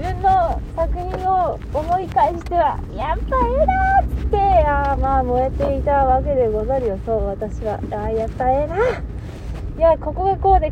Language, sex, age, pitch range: Japanese, female, 20-39, 265-410 Hz